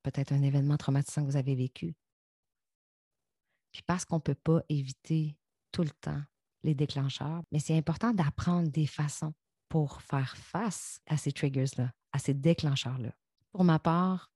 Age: 30-49